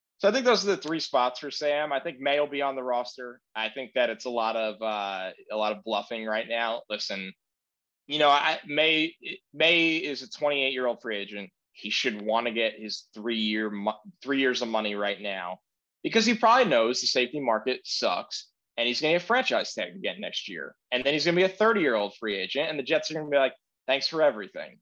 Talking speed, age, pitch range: 235 wpm, 20-39, 110-155 Hz